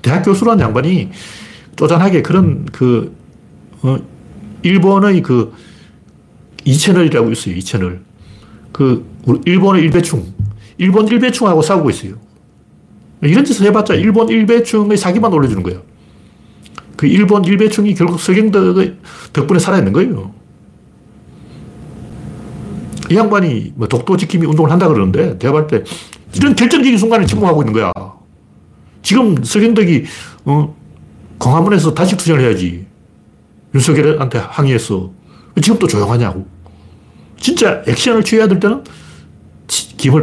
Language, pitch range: Korean, 110-185 Hz